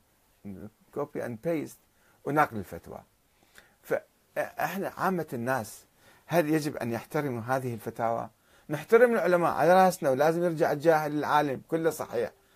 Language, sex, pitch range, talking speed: Arabic, male, 110-150 Hz, 115 wpm